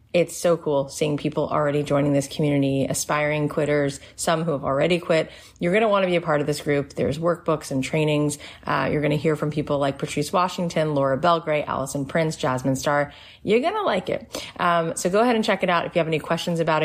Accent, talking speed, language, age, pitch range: American, 235 wpm, English, 30-49, 140-165 Hz